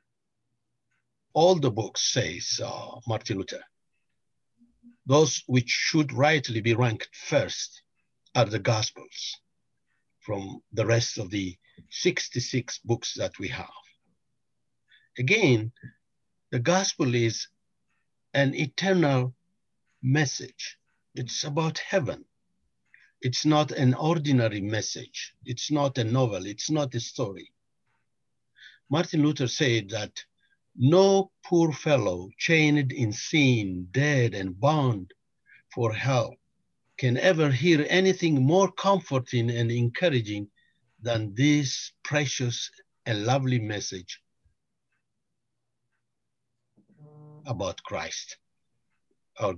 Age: 60-79